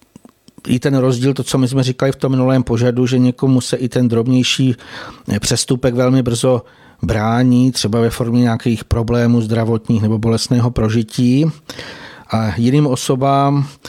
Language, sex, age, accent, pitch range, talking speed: Czech, male, 50-69, native, 120-135 Hz, 145 wpm